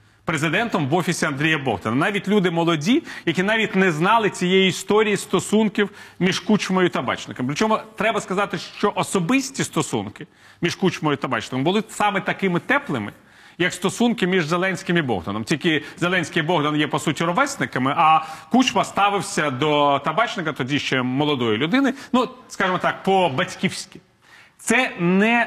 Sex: male